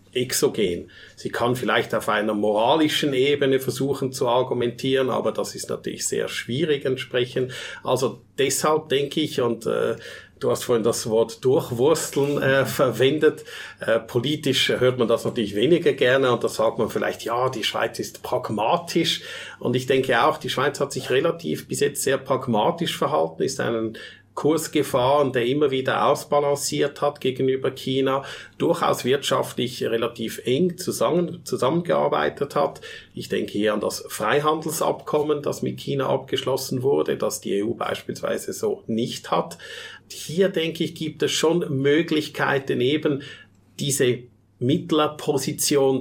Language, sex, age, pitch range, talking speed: German, male, 50-69, 125-155 Hz, 140 wpm